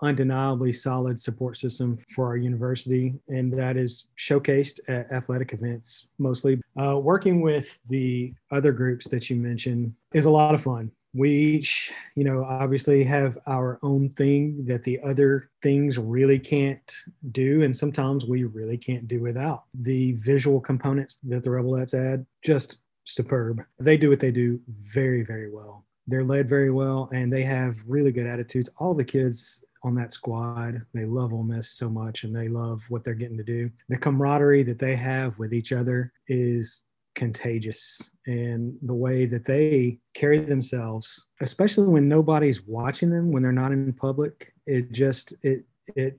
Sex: male